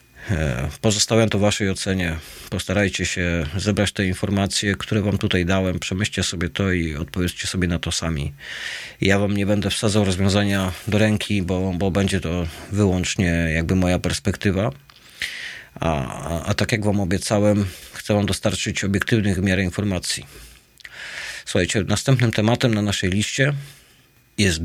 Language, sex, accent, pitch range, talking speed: Polish, male, native, 90-110 Hz, 150 wpm